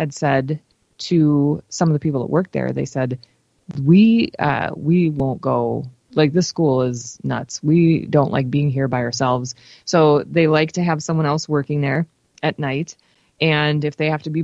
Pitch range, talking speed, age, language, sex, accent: 145-175 Hz, 185 wpm, 20-39, English, female, American